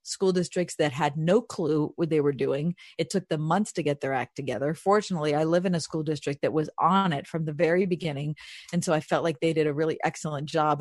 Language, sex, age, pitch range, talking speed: English, female, 40-59, 155-190 Hz, 250 wpm